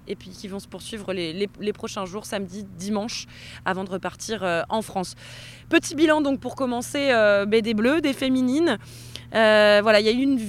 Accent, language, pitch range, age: French, French, 200-250 Hz, 20-39